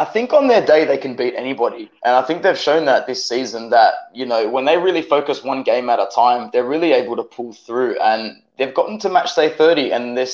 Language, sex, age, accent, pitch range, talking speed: English, male, 20-39, Australian, 130-170 Hz, 255 wpm